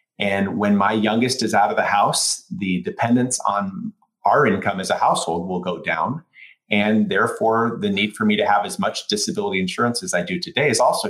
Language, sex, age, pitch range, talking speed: English, male, 30-49, 95-140 Hz, 205 wpm